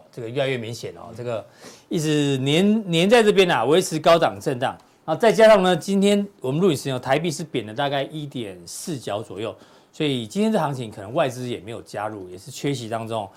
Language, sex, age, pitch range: Chinese, male, 40-59, 135-185 Hz